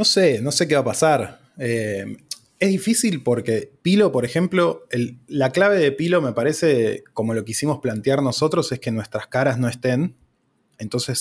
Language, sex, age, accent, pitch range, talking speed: Spanish, male, 20-39, Argentinian, 115-140 Hz, 185 wpm